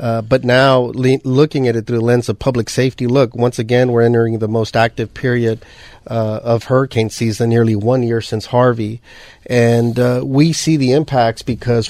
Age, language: 30-49, English